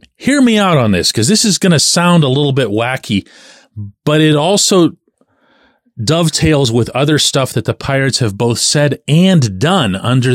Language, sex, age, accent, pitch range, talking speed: English, male, 40-59, American, 110-160 Hz, 180 wpm